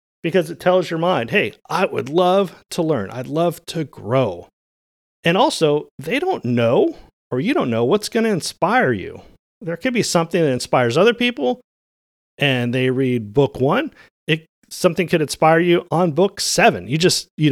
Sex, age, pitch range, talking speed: male, 40-59, 130-175 Hz, 180 wpm